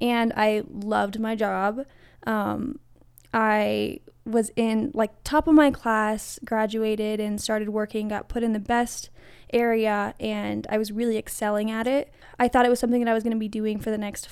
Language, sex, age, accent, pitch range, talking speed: English, female, 10-29, American, 210-235 Hz, 195 wpm